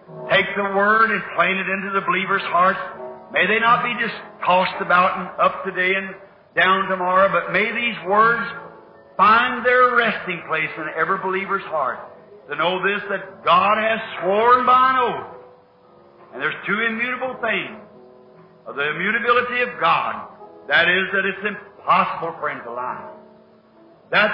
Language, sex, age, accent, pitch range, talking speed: English, male, 50-69, American, 185-230 Hz, 160 wpm